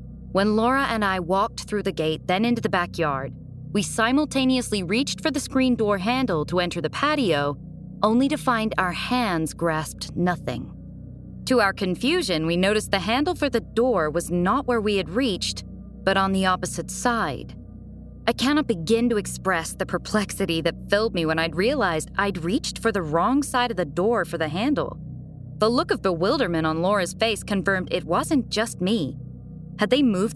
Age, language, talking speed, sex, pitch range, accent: 20-39, English, 180 wpm, female, 170-240 Hz, American